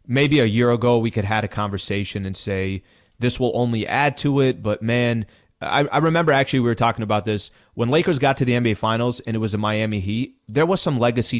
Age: 30-49